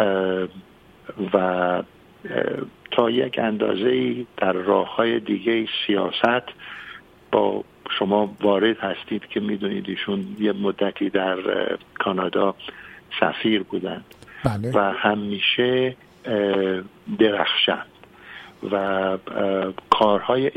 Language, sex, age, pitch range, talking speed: Persian, male, 50-69, 100-120 Hz, 80 wpm